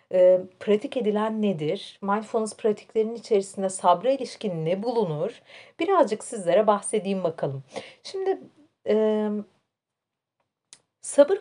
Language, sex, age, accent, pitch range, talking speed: Turkish, female, 40-59, native, 185-265 Hz, 95 wpm